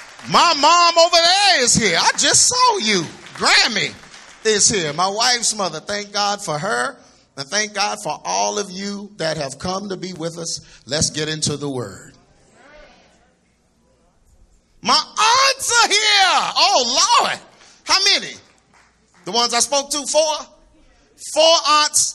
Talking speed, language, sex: 150 wpm, English, male